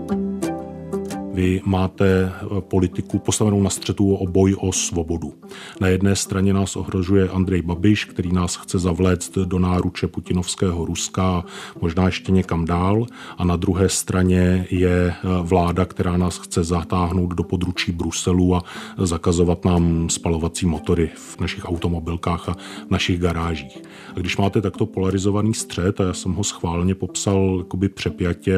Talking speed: 140 wpm